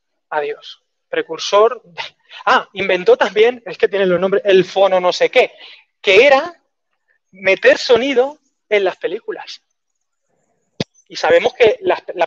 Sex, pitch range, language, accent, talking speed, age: male, 185-260 Hz, Spanish, Spanish, 130 wpm, 20-39